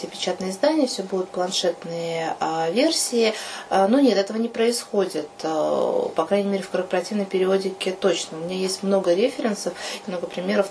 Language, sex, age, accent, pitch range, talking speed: Russian, female, 20-39, native, 185-225 Hz, 140 wpm